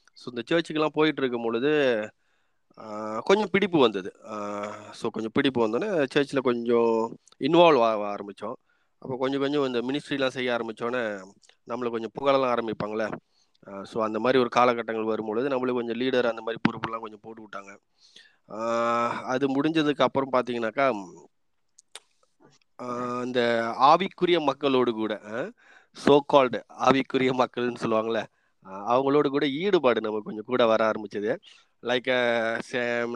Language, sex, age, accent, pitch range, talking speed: Tamil, male, 30-49, native, 115-145 Hz, 125 wpm